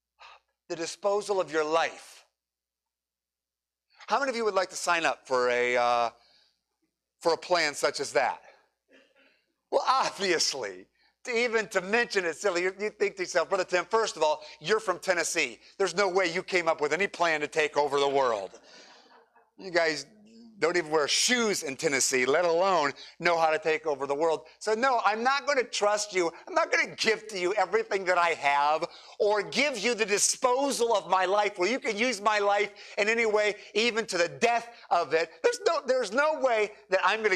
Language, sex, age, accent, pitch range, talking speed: English, male, 50-69, American, 165-225 Hz, 200 wpm